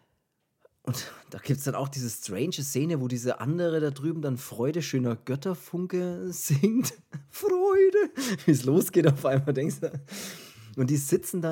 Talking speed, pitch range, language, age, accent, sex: 160 wpm, 115-155 Hz, German, 30-49, German, male